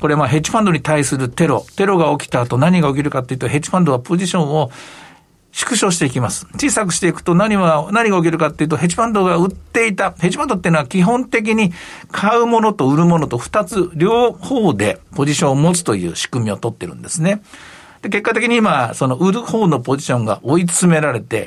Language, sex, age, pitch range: Japanese, male, 60-79, 130-195 Hz